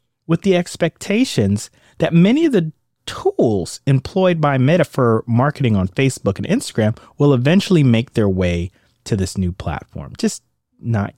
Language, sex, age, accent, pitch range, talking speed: English, male, 30-49, American, 110-165 Hz, 150 wpm